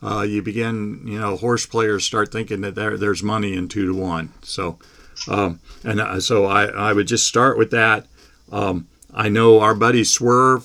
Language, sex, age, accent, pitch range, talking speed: English, male, 50-69, American, 95-110 Hz, 195 wpm